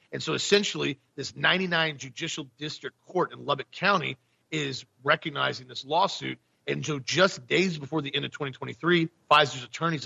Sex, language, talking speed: male, English, 155 wpm